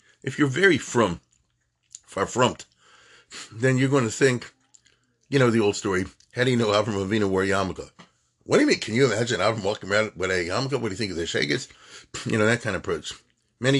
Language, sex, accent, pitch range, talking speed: English, male, American, 105-145 Hz, 220 wpm